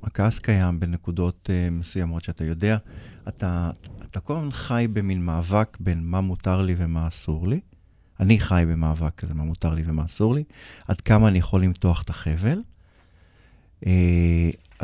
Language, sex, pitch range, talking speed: English, male, 85-105 Hz, 150 wpm